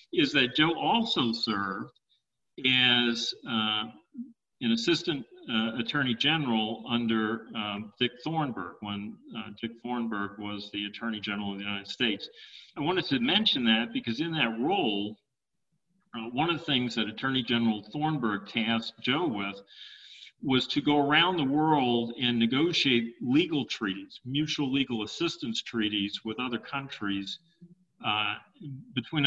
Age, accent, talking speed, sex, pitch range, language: 50-69, American, 140 wpm, male, 110-155 Hz, English